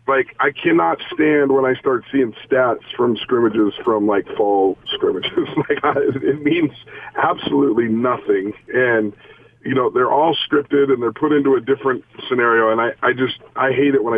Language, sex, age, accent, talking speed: English, male, 40-59, American, 180 wpm